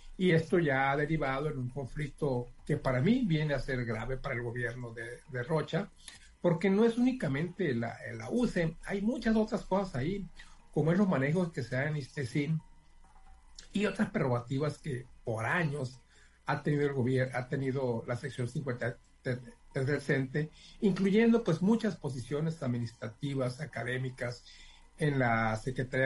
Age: 50-69